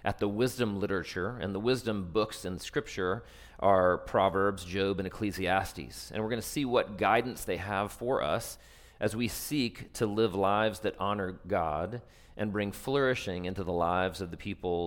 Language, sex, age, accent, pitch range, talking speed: English, male, 40-59, American, 90-110 Hz, 180 wpm